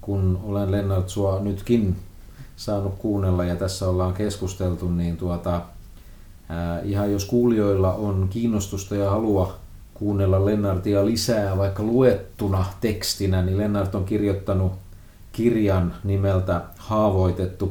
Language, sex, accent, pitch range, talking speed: Finnish, male, native, 90-100 Hz, 115 wpm